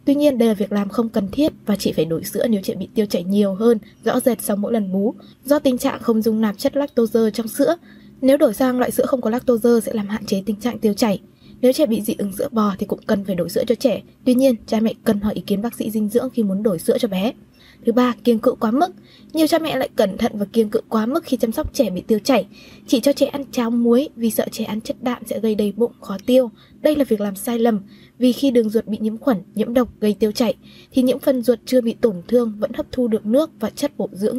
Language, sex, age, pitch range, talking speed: Vietnamese, female, 20-39, 215-260 Hz, 285 wpm